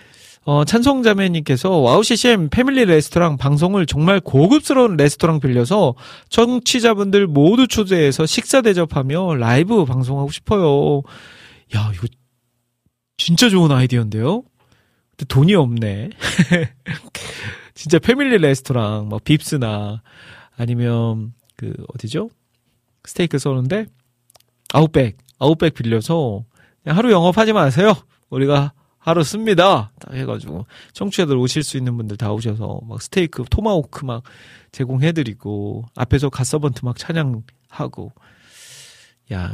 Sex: male